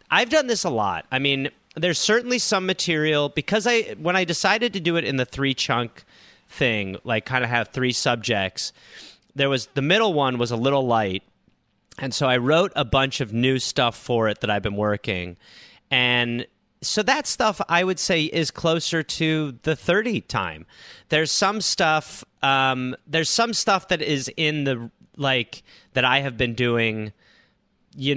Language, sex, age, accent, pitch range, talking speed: English, male, 30-49, American, 110-150 Hz, 180 wpm